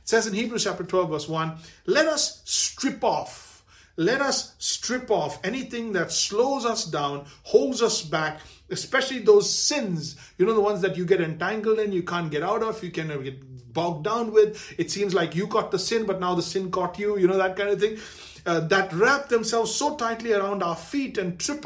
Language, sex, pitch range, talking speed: English, male, 170-225 Hz, 215 wpm